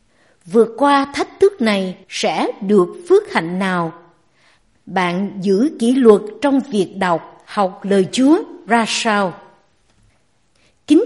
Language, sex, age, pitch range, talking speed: Vietnamese, female, 60-79, 200-290 Hz, 125 wpm